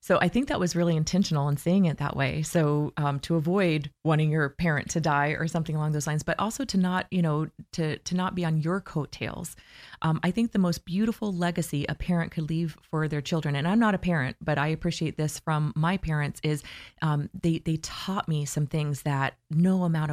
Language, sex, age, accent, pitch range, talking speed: English, female, 30-49, American, 145-175 Hz, 225 wpm